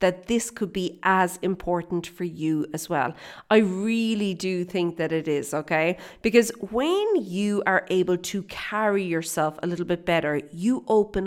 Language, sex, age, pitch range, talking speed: English, female, 40-59, 170-220 Hz, 170 wpm